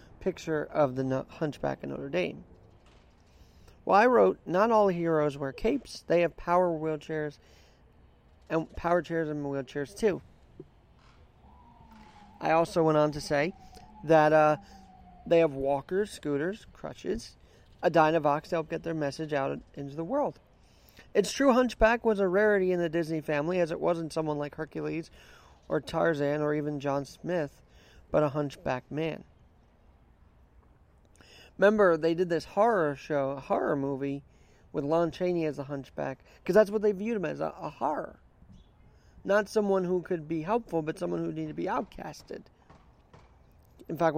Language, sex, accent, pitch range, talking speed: English, male, American, 140-175 Hz, 155 wpm